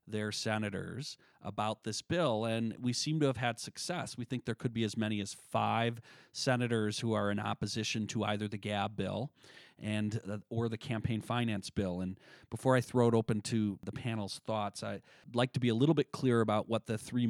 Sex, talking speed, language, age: male, 210 wpm, English, 40-59